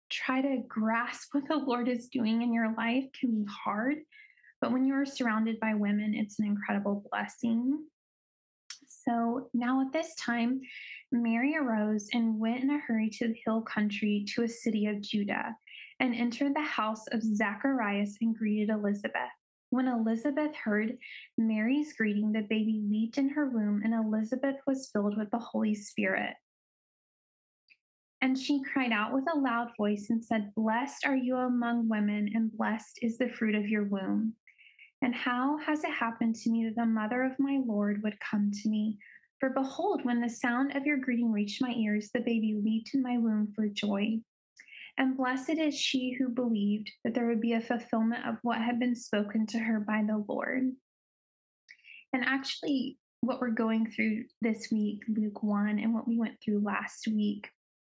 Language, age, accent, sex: English, 10-29, American, female